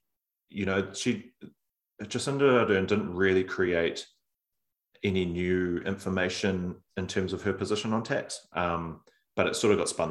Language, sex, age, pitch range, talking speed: English, male, 30-49, 80-100 Hz, 150 wpm